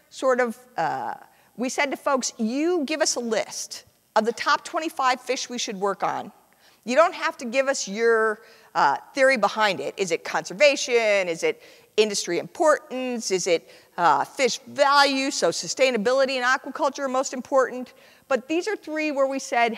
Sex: female